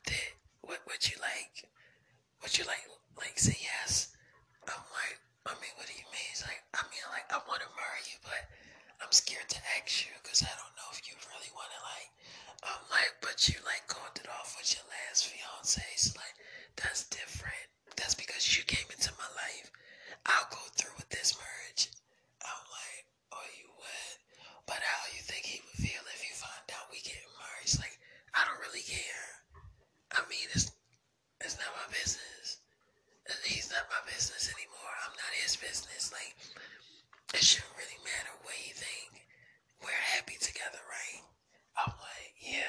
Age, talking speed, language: 20-39, 185 wpm, English